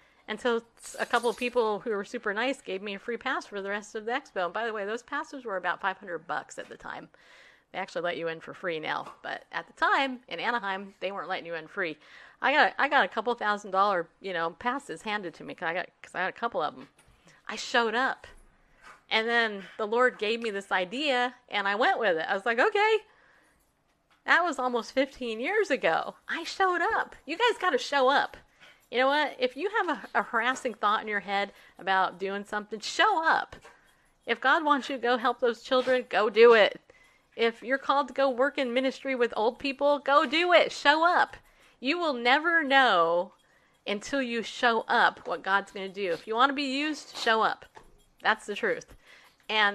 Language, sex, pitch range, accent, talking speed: English, female, 205-270 Hz, American, 220 wpm